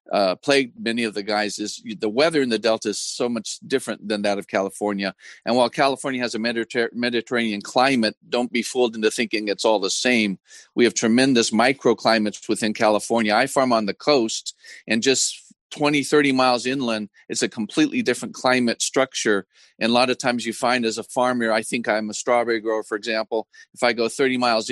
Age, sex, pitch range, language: 40-59, male, 105-125 Hz, English